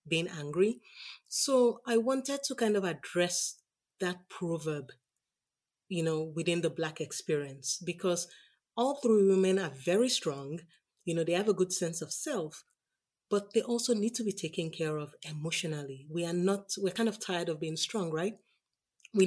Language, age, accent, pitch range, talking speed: English, 30-49, Nigerian, 160-190 Hz, 170 wpm